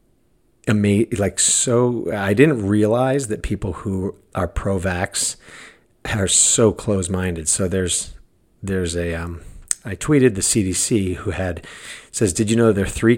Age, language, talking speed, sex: 50-69, English, 140 wpm, male